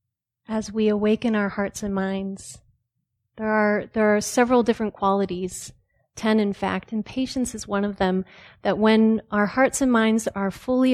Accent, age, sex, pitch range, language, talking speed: American, 30-49, female, 185-225 Hz, English, 170 wpm